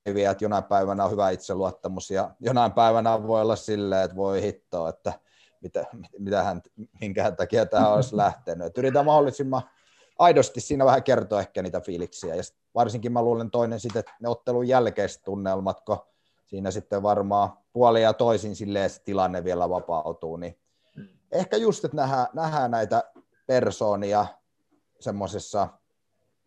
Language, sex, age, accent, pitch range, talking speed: Finnish, male, 30-49, native, 100-120 Hz, 135 wpm